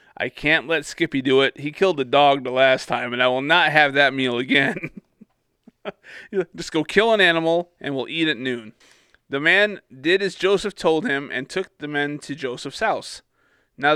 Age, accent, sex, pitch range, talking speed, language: 30-49, American, male, 140-195 Hz, 200 wpm, English